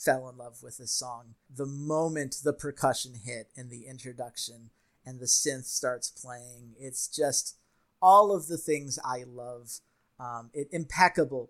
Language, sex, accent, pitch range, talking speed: English, male, American, 125-165 Hz, 155 wpm